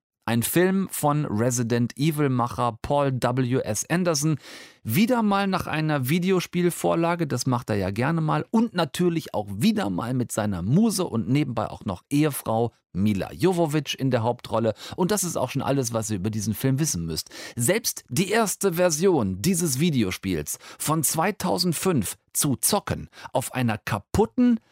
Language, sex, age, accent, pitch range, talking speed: German, male, 40-59, German, 120-170 Hz, 155 wpm